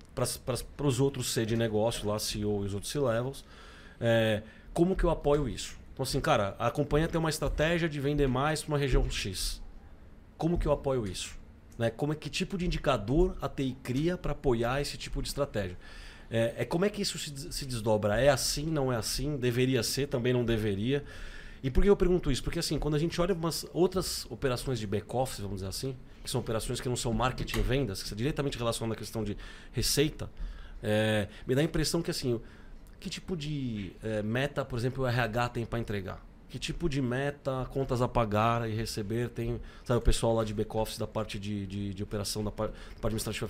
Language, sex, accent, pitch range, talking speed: Portuguese, male, Brazilian, 110-145 Hz, 205 wpm